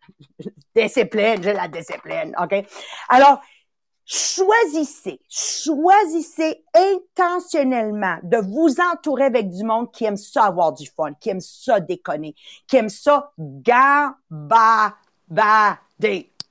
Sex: female